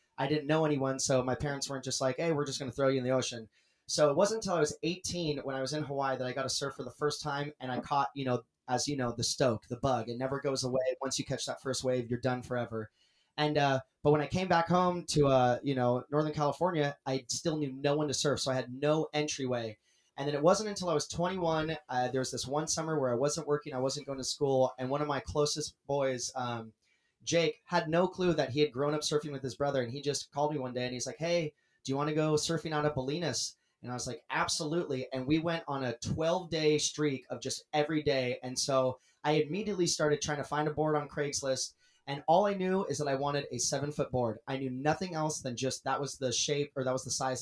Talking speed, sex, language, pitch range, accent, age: 265 wpm, male, English, 130-150 Hz, American, 30-49